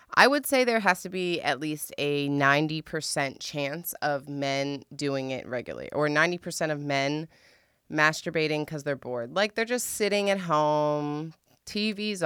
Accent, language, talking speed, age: American, English, 155 wpm, 20-39